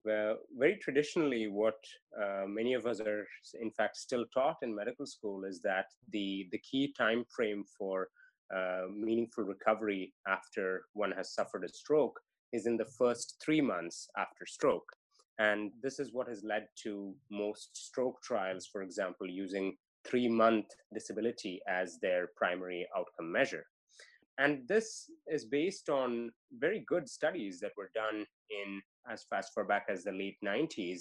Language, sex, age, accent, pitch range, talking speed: English, male, 30-49, Indian, 100-125 Hz, 155 wpm